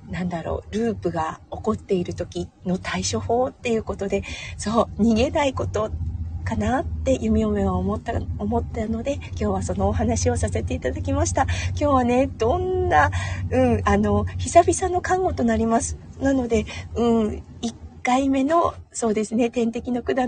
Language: Japanese